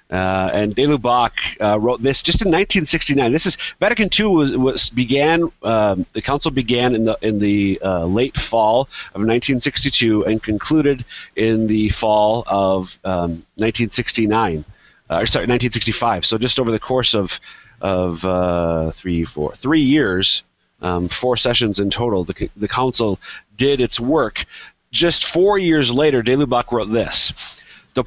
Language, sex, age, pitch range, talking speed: English, male, 30-49, 105-140 Hz, 160 wpm